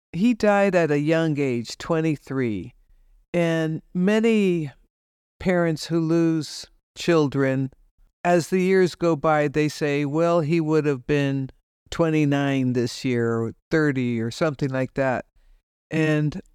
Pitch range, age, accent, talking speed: 135-175 Hz, 60-79, American, 125 wpm